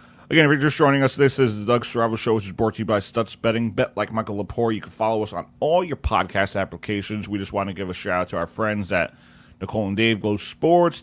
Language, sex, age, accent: English, male, 30-49, American